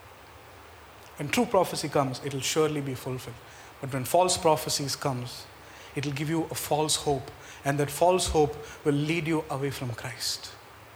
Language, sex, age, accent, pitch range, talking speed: English, male, 30-49, Indian, 130-160 Hz, 170 wpm